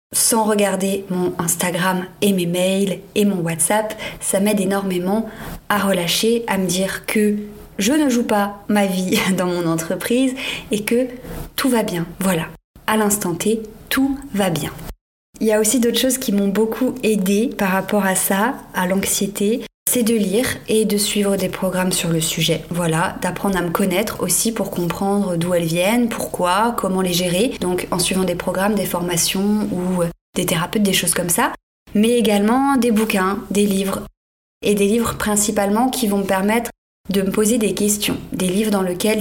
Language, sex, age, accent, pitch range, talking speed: French, female, 30-49, French, 185-220 Hz, 180 wpm